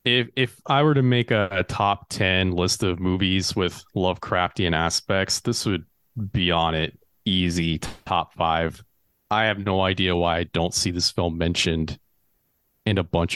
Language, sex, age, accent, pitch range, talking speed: English, male, 30-49, American, 90-110 Hz, 170 wpm